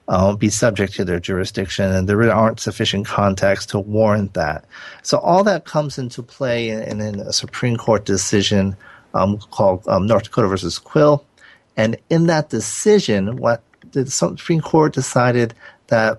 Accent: American